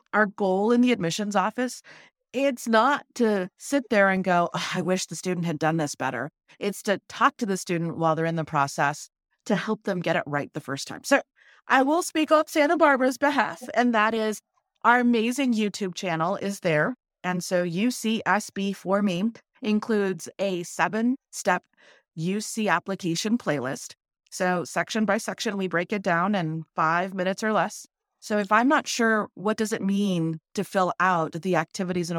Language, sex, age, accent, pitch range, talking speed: English, female, 30-49, American, 170-225 Hz, 180 wpm